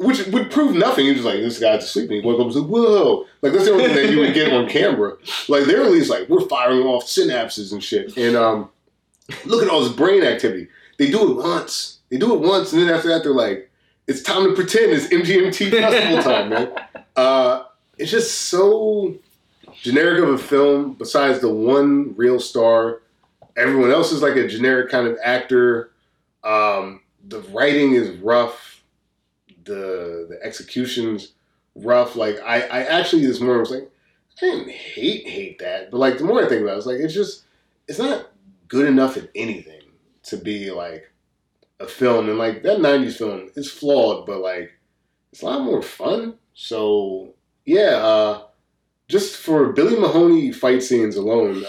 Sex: male